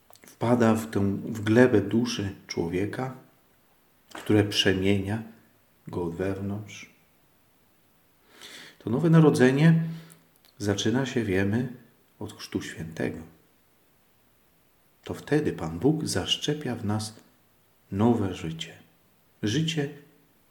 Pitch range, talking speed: 95-120 Hz, 90 wpm